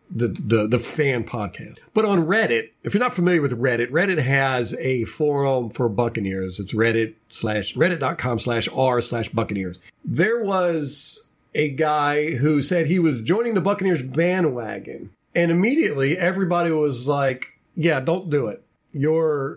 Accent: American